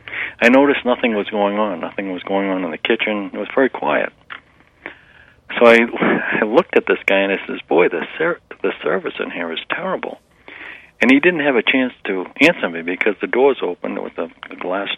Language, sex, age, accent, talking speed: English, male, 60-79, American, 205 wpm